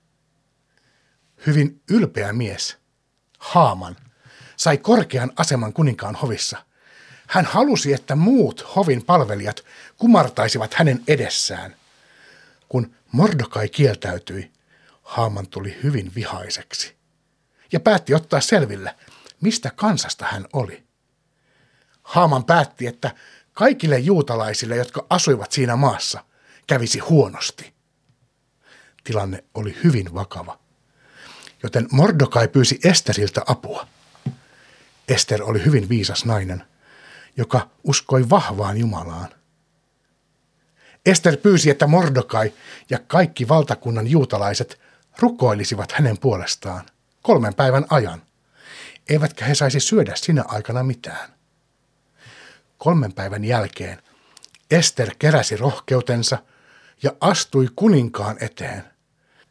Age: 60-79